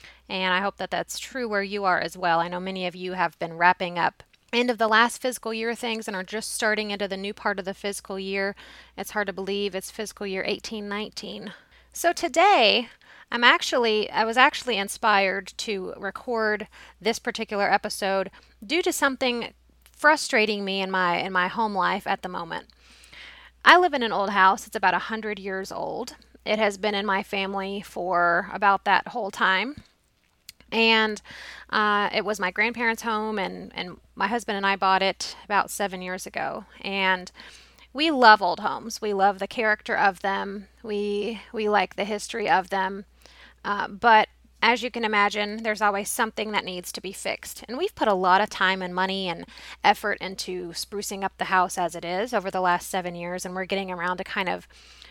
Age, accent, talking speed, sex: 30-49, American, 195 wpm, female